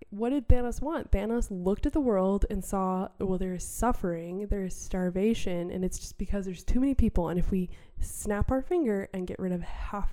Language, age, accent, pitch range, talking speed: English, 20-39, American, 185-225 Hz, 220 wpm